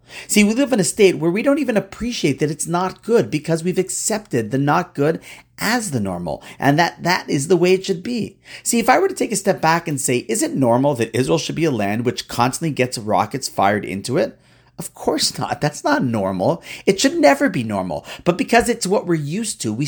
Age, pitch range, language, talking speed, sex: 40-59, 130-185 Hz, English, 240 wpm, male